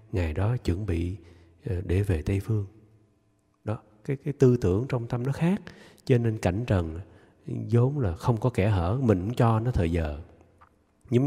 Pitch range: 90-125 Hz